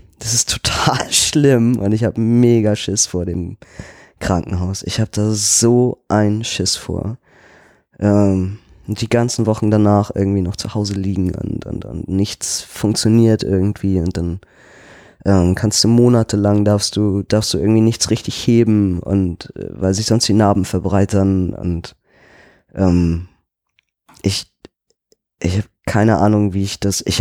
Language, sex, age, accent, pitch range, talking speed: German, male, 20-39, German, 100-120 Hz, 150 wpm